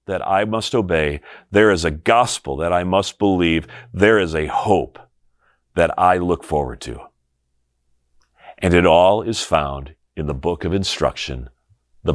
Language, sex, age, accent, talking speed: English, male, 40-59, American, 160 wpm